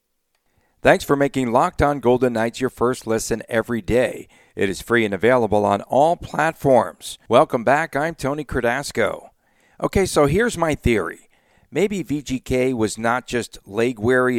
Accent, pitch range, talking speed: American, 110-140 Hz, 150 wpm